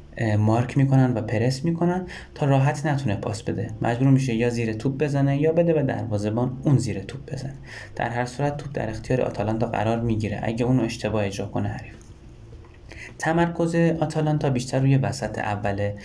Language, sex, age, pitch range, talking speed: Persian, male, 20-39, 105-135 Hz, 170 wpm